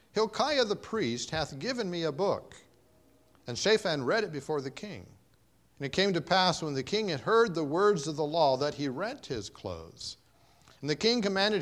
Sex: male